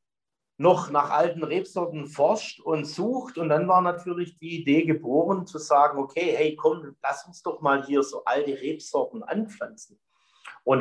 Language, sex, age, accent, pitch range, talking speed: German, male, 50-69, German, 130-170 Hz, 160 wpm